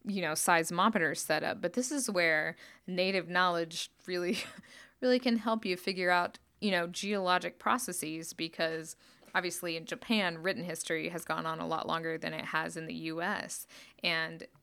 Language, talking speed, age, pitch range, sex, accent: English, 170 wpm, 20-39, 165-195 Hz, female, American